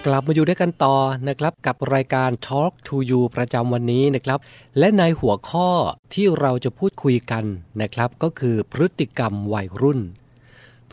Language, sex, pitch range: Thai, male, 115-145 Hz